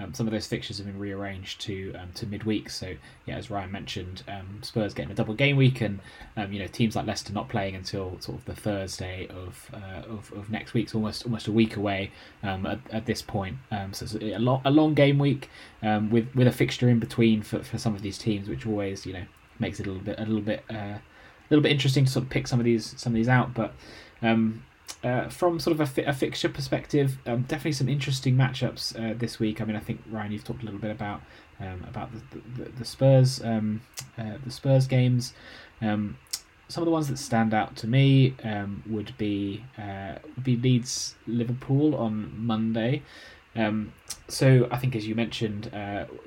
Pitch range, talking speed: 100-125 Hz, 225 wpm